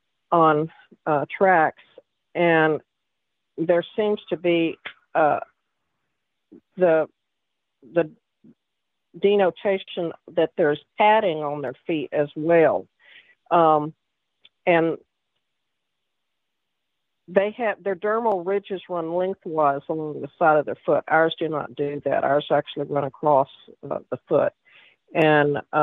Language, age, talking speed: English, 50-69, 110 wpm